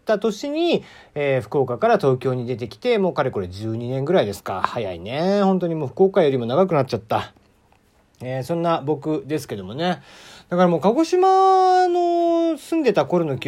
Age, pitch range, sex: 40-59, 120-190 Hz, male